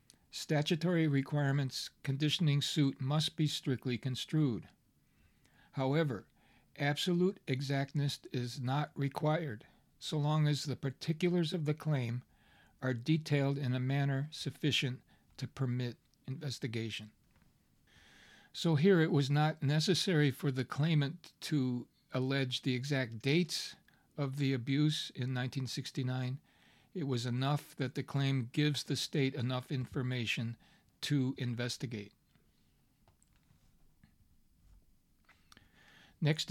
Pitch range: 125-150 Hz